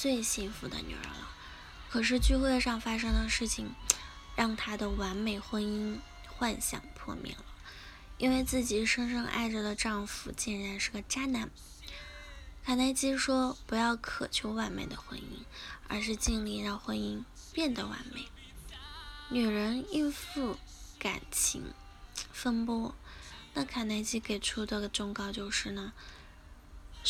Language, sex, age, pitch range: Chinese, female, 10-29, 205-250 Hz